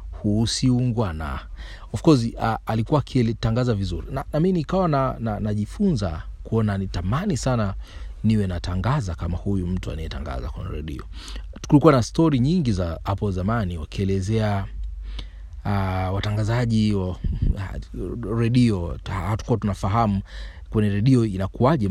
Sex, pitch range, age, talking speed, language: male, 90-115 Hz, 30-49, 115 wpm, Swahili